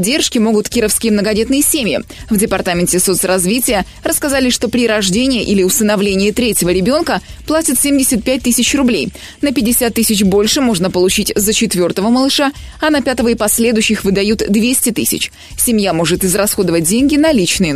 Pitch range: 205-270 Hz